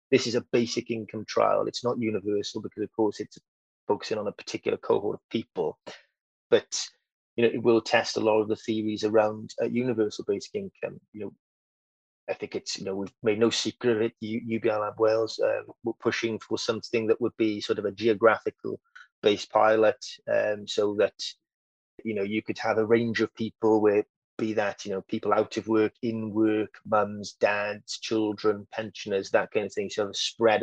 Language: English